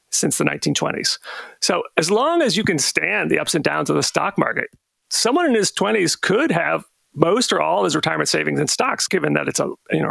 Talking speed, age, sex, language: 225 wpm, 40-59, male, English